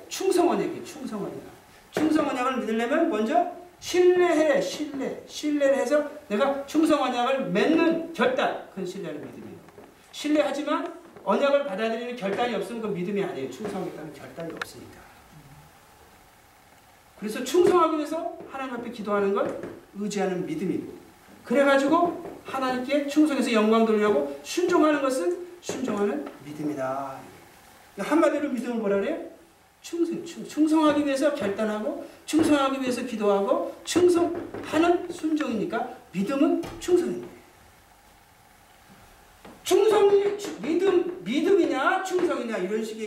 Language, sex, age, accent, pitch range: Korean, male, 40-59, native, 200-320 Hz